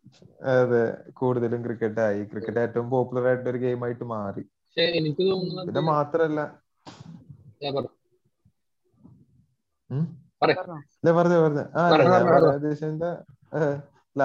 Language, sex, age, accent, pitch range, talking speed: Malayalam, male, 30-49, native, 115-150 Hz, 45 wpm